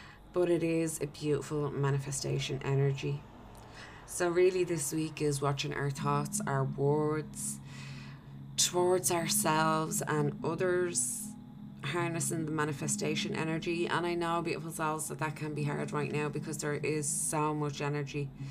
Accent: Irish